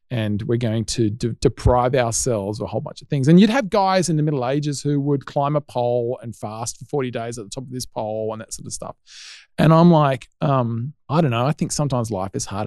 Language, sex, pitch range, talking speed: English, male, 115-160 Hz, 255 wpm